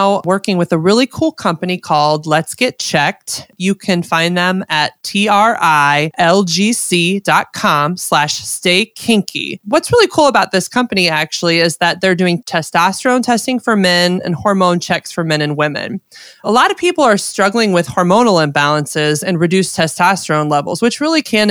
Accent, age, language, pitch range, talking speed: American, 20-39, English, 165-215 Hz, 160 wpm